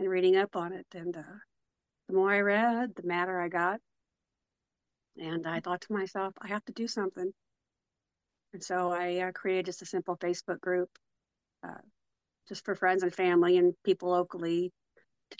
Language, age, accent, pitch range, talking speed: English, 50-69, American, 170-185 Hz, 175 wpm